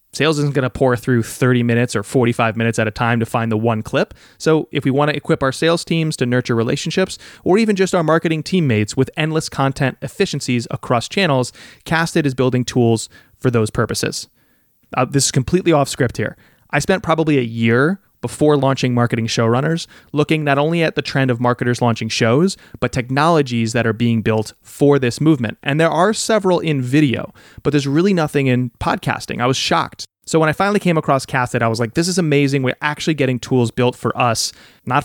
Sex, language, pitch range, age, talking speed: male, English, 120-155 Hz, 30-49, 205 wpm